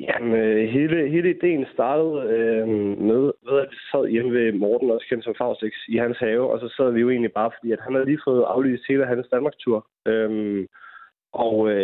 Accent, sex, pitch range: native, male, 110-135 Hz